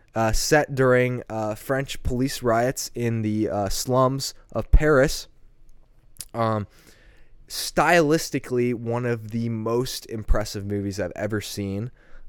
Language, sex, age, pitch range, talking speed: English, male, 20-39, 105-130 Hz, 115 wpm